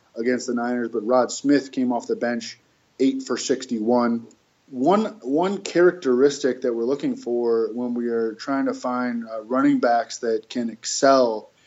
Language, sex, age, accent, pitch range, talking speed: English, male, 20-39, American, 120-145 Hz, 165 wpm